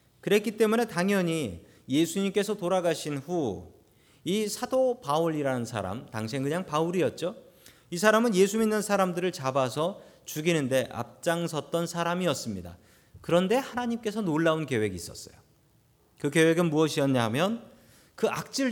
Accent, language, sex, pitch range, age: native, Korean, male, 140-205 Hz, 40-59